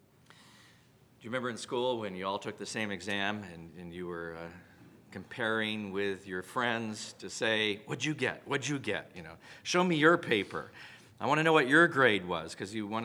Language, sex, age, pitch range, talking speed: English, male, 40-59, 105-150 Hz, 205 wpm